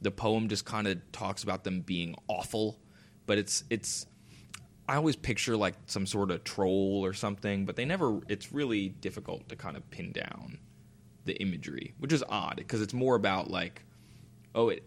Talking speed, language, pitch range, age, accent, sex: 185 wpm, English, 95-120 Hz, 20-39, American, male